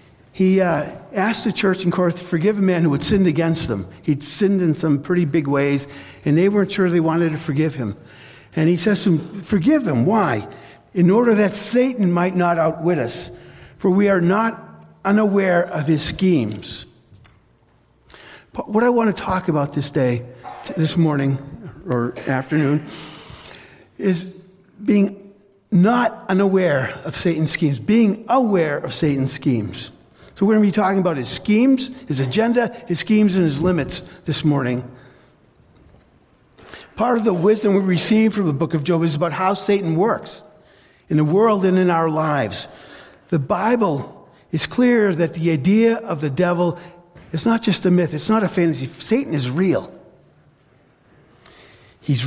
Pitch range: 150-205 Hz